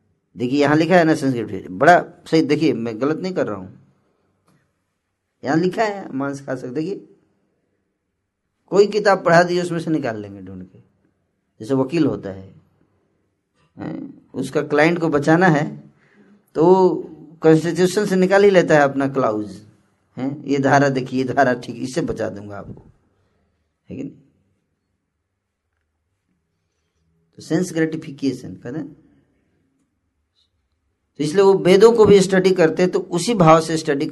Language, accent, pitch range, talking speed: Hindi, native, 100-160 Hz, 140 wpm